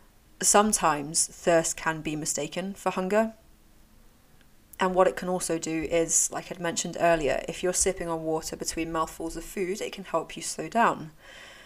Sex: female